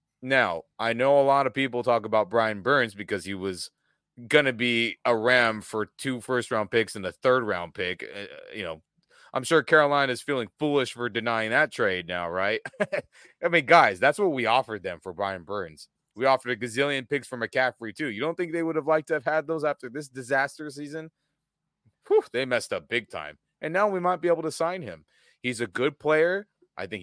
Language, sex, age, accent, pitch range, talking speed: English, male, 30-49, American, 115-150 Hz, 220 wpm